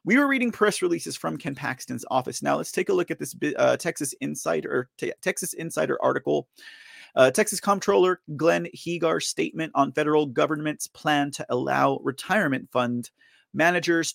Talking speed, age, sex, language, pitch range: 155 wpm, 30-49, male, English, 145-200 Hz